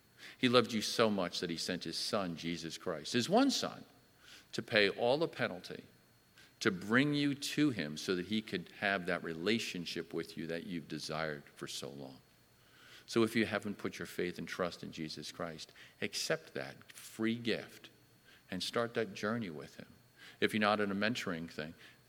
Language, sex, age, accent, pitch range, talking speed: English, male, 50-69, American, 85-130 Hz, 185 wpm